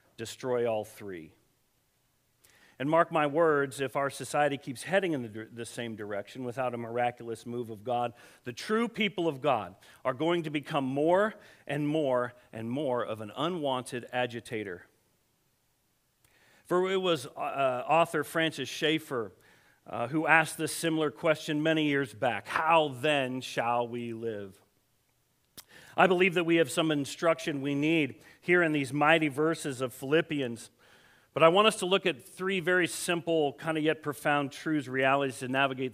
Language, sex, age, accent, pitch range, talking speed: English, male, 50-69, American, 125-165 Hz, 160 wpm